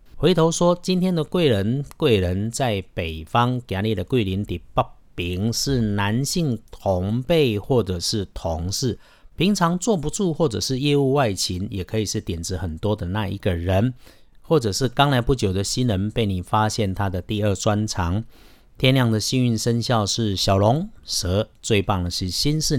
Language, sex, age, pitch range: Chinese, male, 50-69, 95-125 Hz